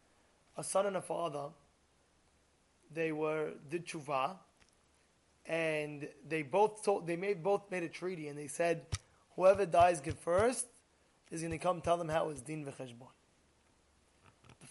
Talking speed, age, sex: 150 wpm, 20-39, male